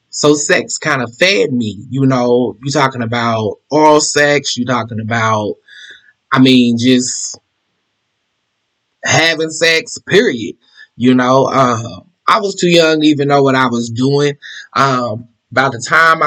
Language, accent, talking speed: English, American, 150 wpm